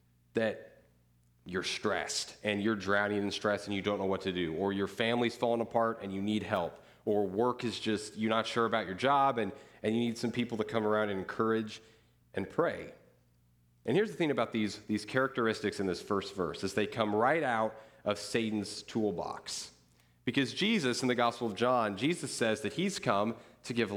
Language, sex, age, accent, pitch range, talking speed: English, male, 30-49, American, 105-125 Hz, 205 wpm